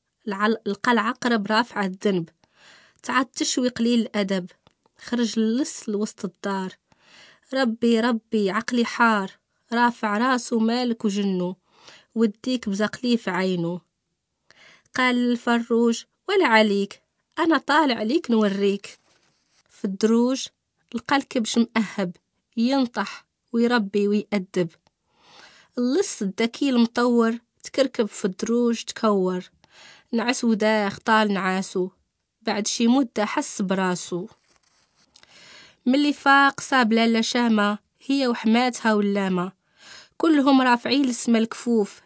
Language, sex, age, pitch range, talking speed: English, female, 20-39, 205-245 Hz, 95 wpm